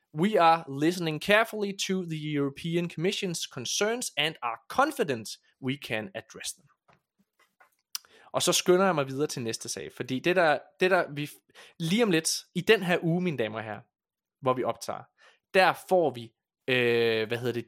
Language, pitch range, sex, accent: Danish, 125-175 Hz, male, native